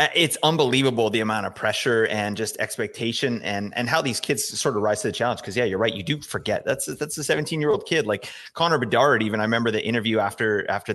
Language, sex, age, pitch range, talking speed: English, male, 30-49, 105-145 Hz, 240 wpm